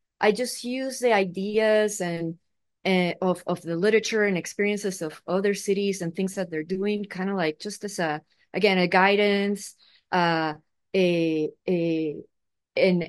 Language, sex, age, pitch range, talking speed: English, female, 30-49, 175-215 Hz, 155 wpm